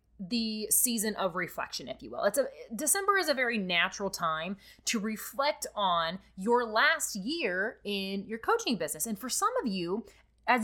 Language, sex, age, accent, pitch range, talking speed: English, female, 20-39, American, 195-270 Hz, 175 wpm